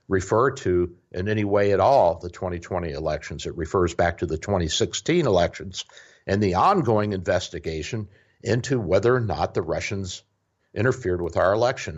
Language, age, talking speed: English, 60-79, 155 wpm